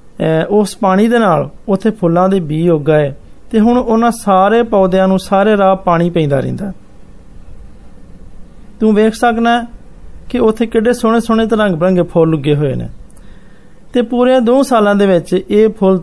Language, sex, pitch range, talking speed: Hindi, male, 160-215 Hz, 115 wpm